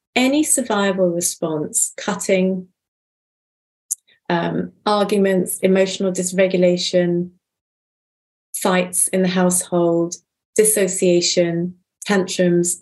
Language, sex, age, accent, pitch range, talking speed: English, female, 30-49, British, 175-215 Hz, 65 wpm